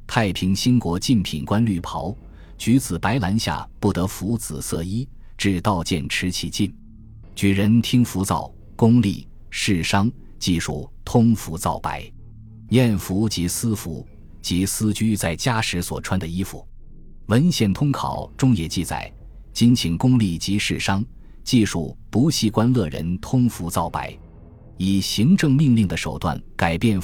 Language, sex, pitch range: Chinese, male, 85-115 Hz